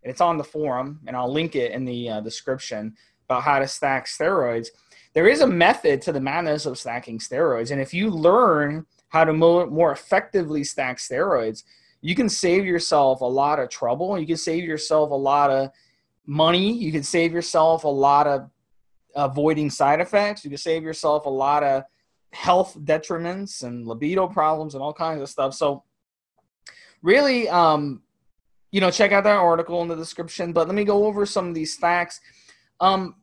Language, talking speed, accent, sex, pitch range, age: English, 190 wpm, American, male, 135-175 Hz, 20-39